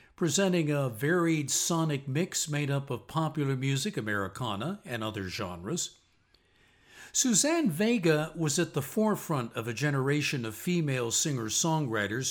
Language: English